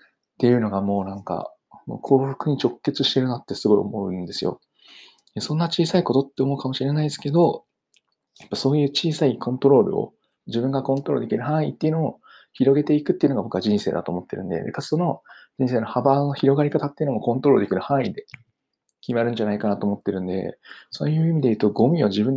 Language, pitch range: Japanese, 105-140 Hz